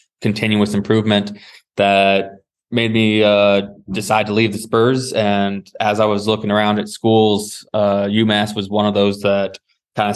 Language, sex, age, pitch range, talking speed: English, male, 20-39, 100-110 Hz, 160 wpm